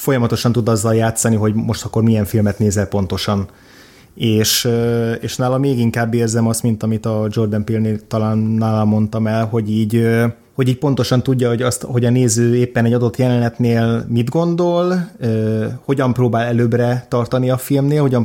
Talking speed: 170 wpm